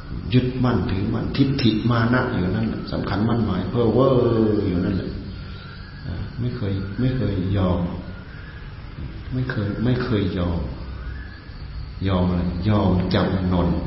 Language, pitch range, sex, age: Thai, 90-125 Hz, male, 60-79